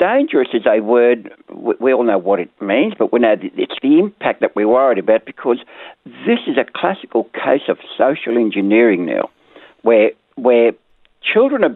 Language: English